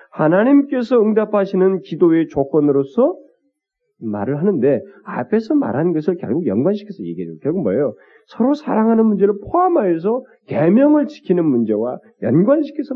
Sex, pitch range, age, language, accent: male, 150-240 Hz, 40-59, Korean, native